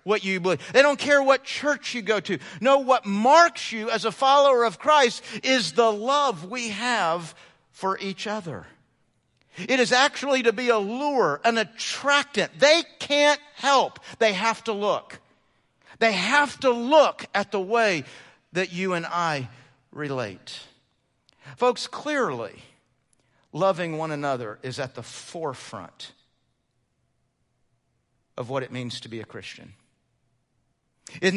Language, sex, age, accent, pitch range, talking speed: English, male, 50-69, American, 175-250 Hz, 140 wpm